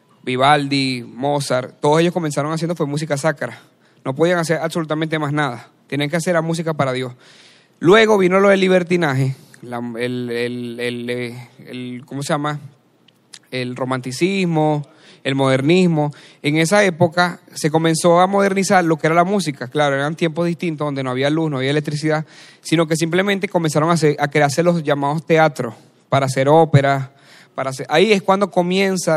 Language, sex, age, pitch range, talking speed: Spanish, male, 30-49, 140-175 Hz, 165 wpm